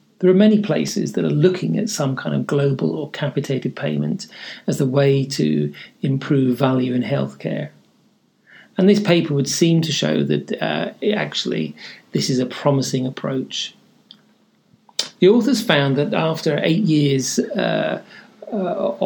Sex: male